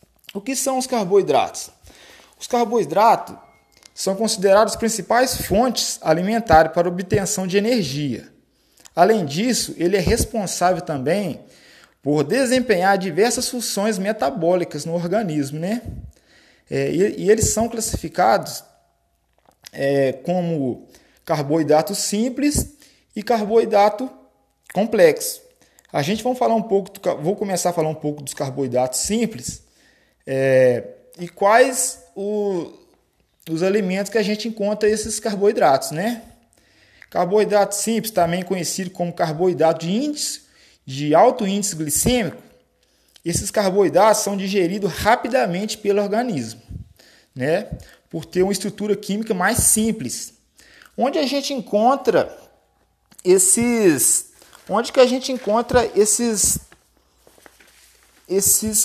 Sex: male